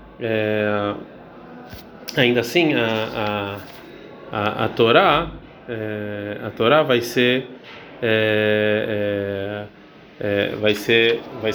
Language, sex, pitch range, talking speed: Portuguese, male, 110-140 Hz, 95 wpm